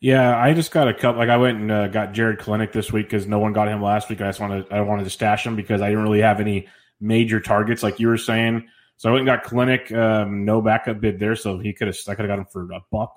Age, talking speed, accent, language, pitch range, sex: 20-39, 305 wpm, American, English, 105-120 Hz, male